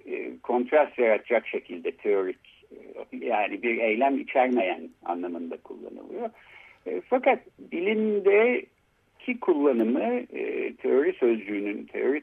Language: Turkish